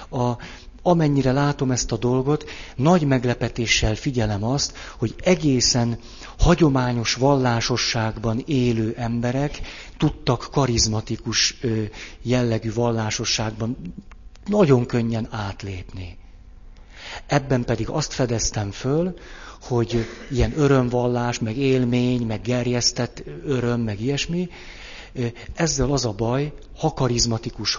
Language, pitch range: Hungarian, 100-130 Hz